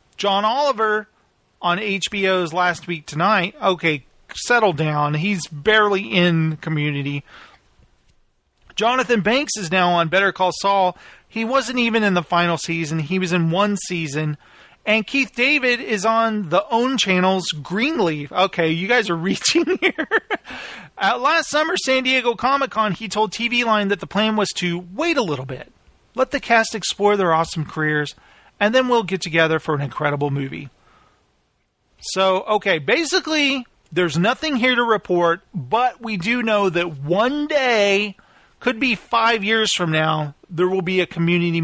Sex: male